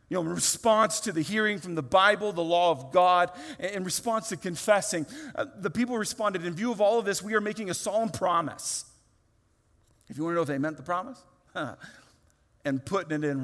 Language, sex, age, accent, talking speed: English, male, 40-59, American, 220 wpm